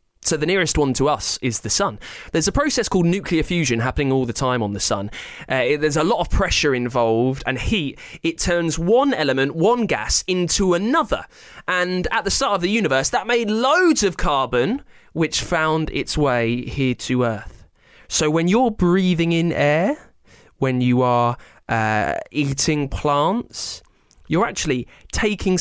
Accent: British